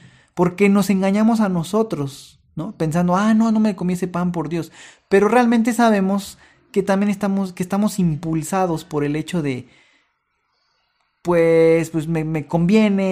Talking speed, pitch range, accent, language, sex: 155 wpm, 155-205 Hz, Mexican, Spanish, male